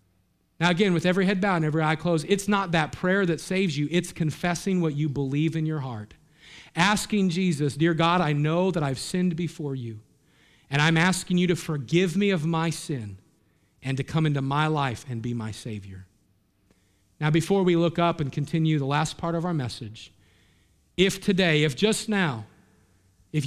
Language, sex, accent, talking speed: English, male, American, 190 wpm